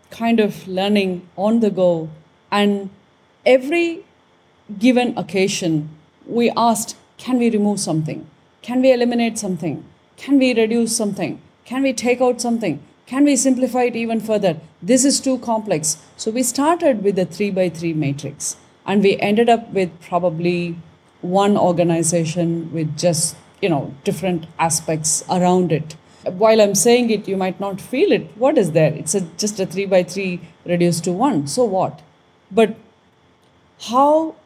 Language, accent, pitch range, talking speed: English, Indian, 175-230 Hz, 150 wpm